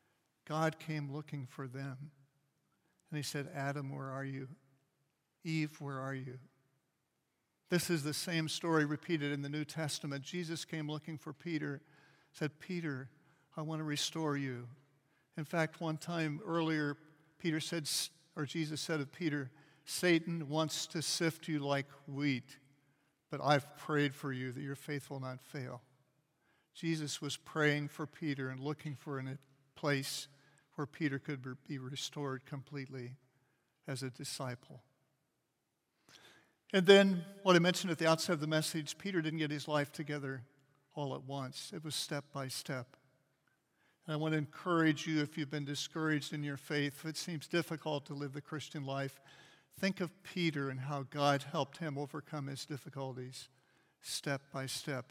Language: English